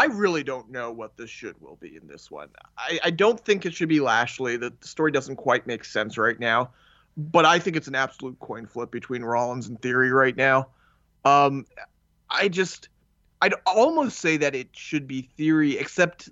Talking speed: 200 wpm